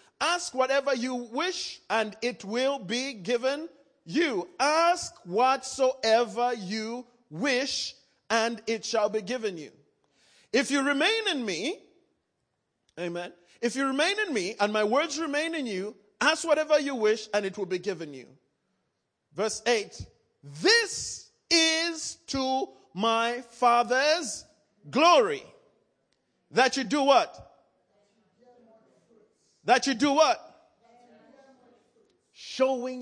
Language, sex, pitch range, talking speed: English, male, 215-315 Hz, 115 wpm